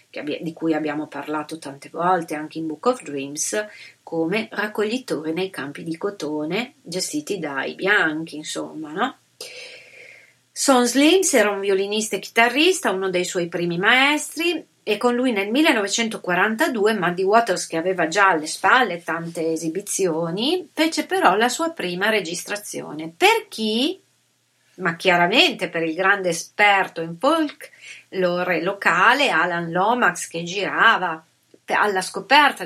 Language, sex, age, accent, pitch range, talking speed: Italian, female, 40-59, native, 165-220 Hz, 135 wpm